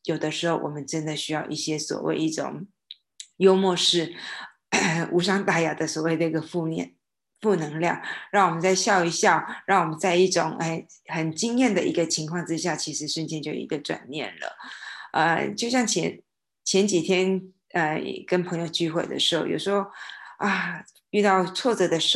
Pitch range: 160-195 Hz